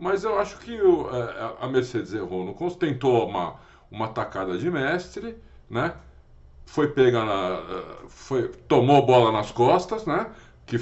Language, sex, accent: Portuguese, male, Brazilian